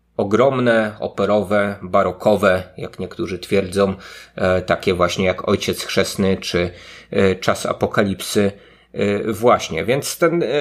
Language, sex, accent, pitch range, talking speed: Polish, male, native, 100-135 Hz, 95 wpm